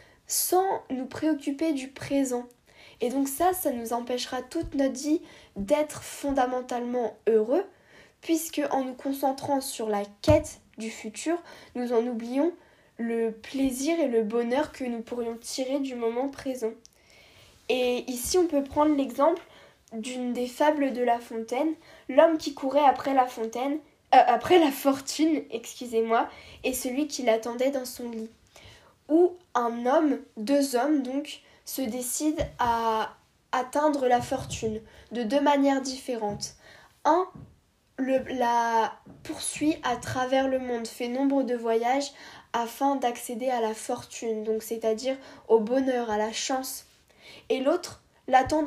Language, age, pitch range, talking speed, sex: English, 10-29, 235-290 Hz, 135 wpm, female